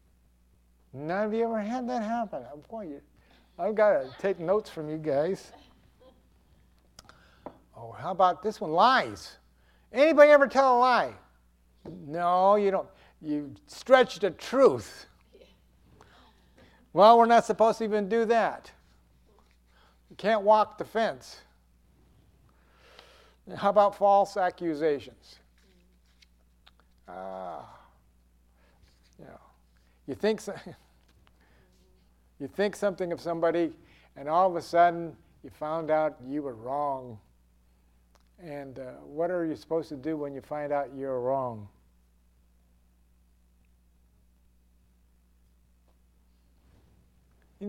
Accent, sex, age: American, male, 60-79